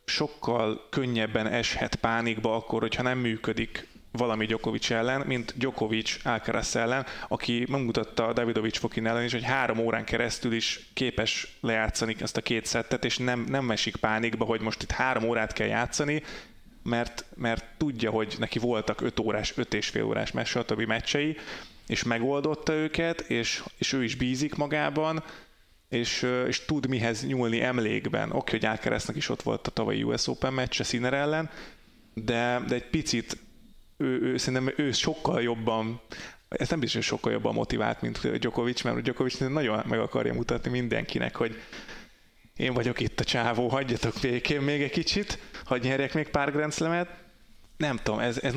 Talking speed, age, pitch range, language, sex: 165 wpm, 30-49, 115-135 Hz, Hungarian, male